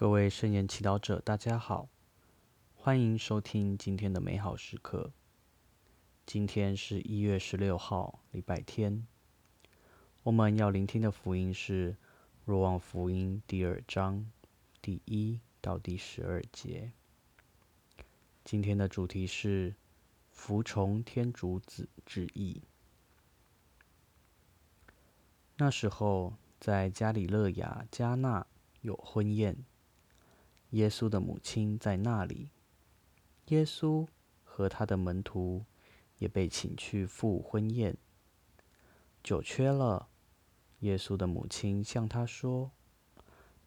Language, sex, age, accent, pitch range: Chinese, male, 20-39, native, 95-110 Hz